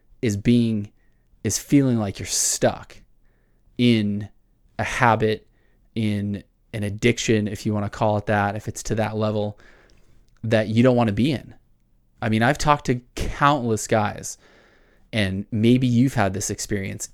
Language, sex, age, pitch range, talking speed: English, male, 20-39, 100-120 Hz, 160 wpm